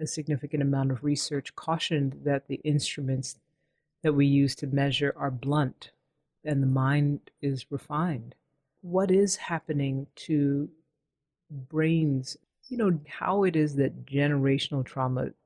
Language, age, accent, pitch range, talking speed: English, 40-59, American, 135-155 Hz, 130 wpm